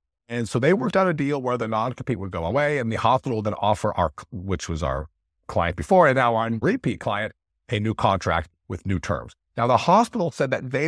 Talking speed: 235 wpm